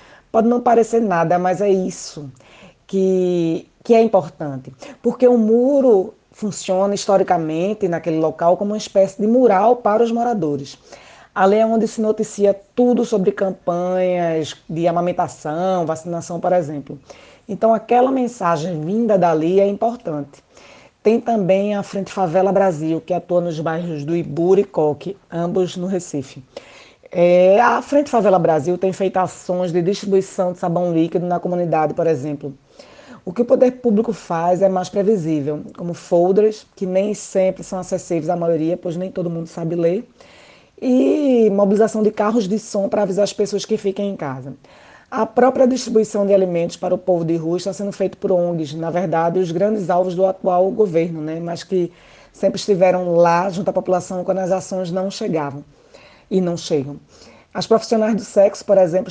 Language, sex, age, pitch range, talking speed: Portuguese, female, 20-39, 170-210 Hz, 165 wpm